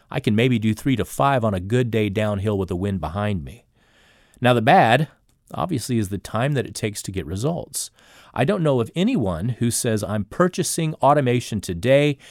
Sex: male